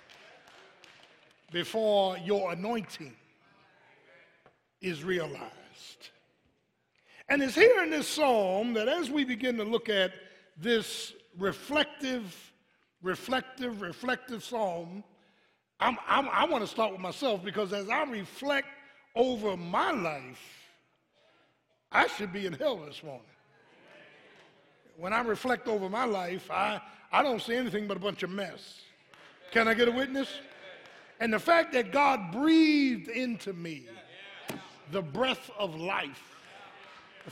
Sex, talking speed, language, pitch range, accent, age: male, 125 wpm, English, 195-270 Hz, American, 60-79